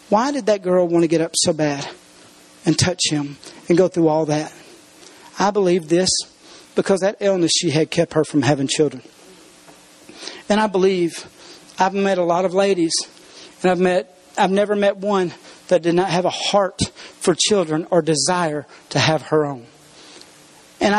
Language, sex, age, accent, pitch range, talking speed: English, male, 40-59, American, 165-200 Hz, 175 wpm